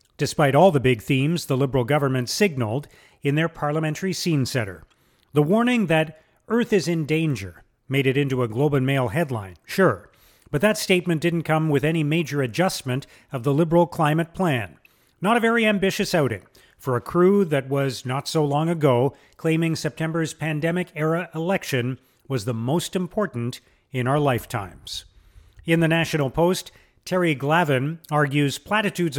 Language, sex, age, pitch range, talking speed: English, male, 40-59, 135-175 Hz, 155 wpm